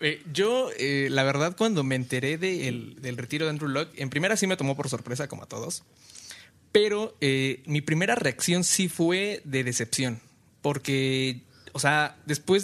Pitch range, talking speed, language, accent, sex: 135-170 Hz, 180 wpm, Spanish, Mexican, male